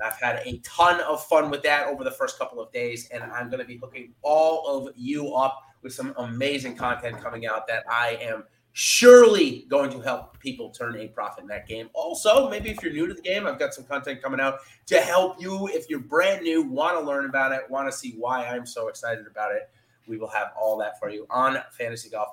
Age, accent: 30-49, American